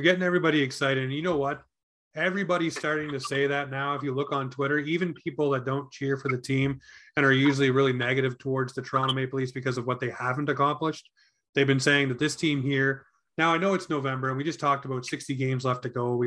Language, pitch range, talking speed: English, 135-155 Hz, 240 wpm